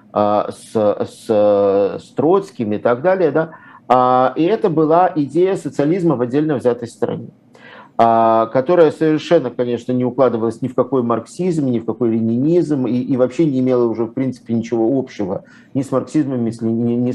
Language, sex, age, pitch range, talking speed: Russian, male, 50-69, 120-165 Hz, 150 wpm